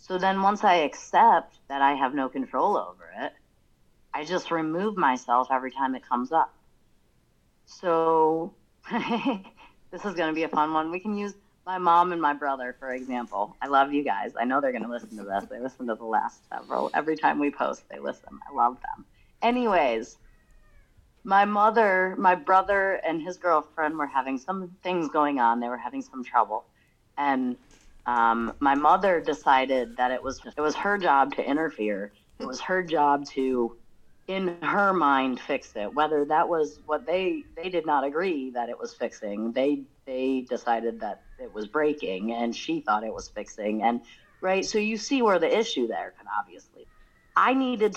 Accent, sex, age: American, female, 30-49